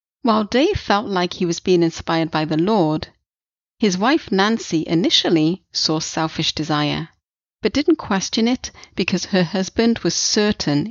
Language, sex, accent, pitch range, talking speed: English, female, British, 160-200 Hz, 150 wpm